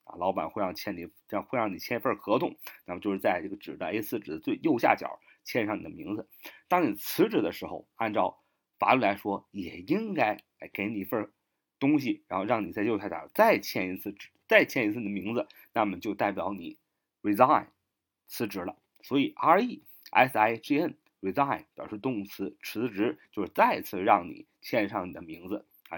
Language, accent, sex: Chinese, native, male